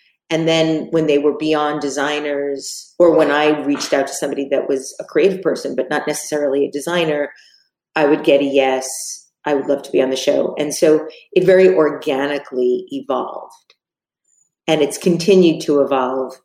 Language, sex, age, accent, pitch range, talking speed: English, female, 40-59, American, 135-155 Hz, 175 wpm